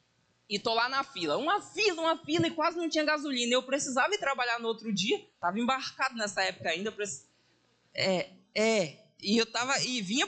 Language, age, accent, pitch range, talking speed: Portuguese, 20-39, Brazilian, 215-320 Hz, 195 wpm